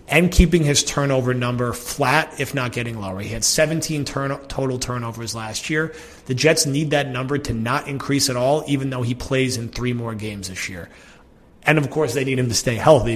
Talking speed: 210 wpm